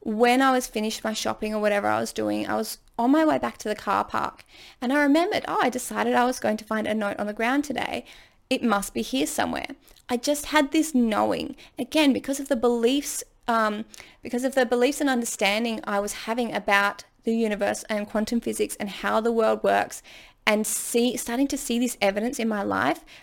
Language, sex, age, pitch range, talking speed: English, female, 20-39, 220-270 Hz, 215 wpm